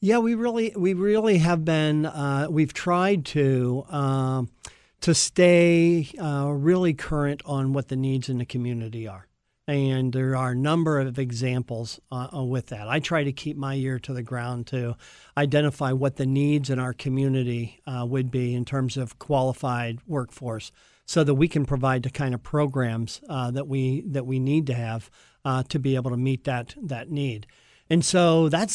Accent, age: American, 50-69